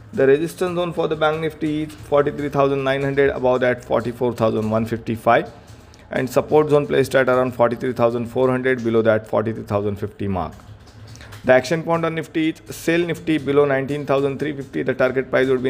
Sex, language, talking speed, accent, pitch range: male, English, 145 wpm, Indian, 115-145 Hz